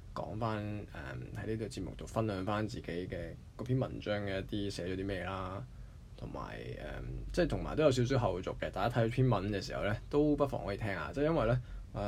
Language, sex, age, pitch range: Chinese, male, 20-39, 100-125 Hz